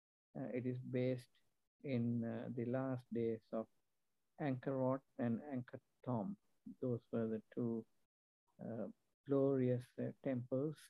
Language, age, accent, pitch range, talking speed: Hindi, 50-69, native, 115-130 Hz, 125 wpm